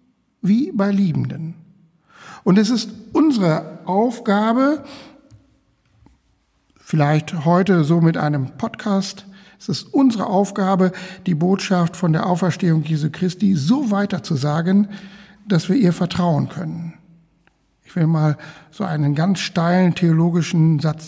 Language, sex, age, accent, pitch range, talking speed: German, male, 60-79, German, 165-210 Hz, 120 wpm